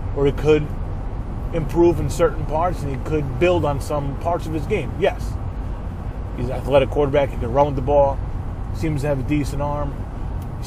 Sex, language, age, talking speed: male, English, 30-49, 200 wpm